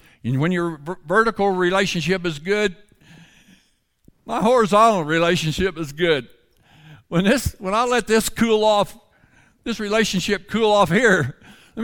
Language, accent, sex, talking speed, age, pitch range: English, American, male, 130 wpm, 60-79, 130-210 Hz